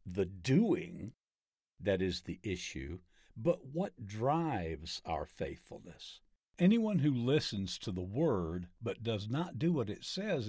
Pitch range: 95-155 Hz